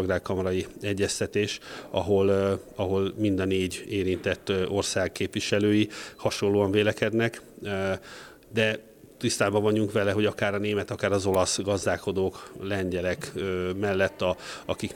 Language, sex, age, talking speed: Hungarian, male, 30-49, 110 wpm